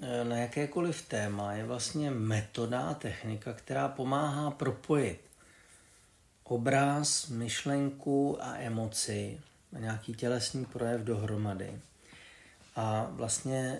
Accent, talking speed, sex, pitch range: native, 90 wpm, male, 110-125 Hz